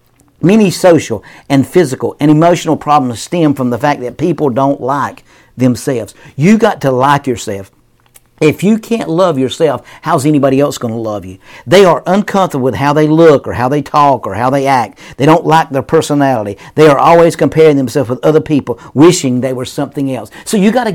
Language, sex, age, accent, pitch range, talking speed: English, male, 50-69, American, 140-180 Hz, 195 wpm